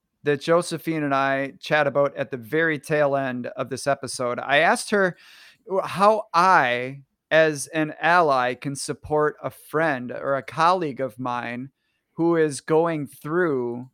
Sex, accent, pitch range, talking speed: male, American, 135-170 Hz, 150 wpm